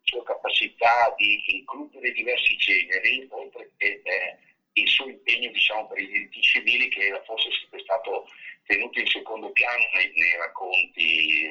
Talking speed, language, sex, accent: 145 wpm, Italian, male, native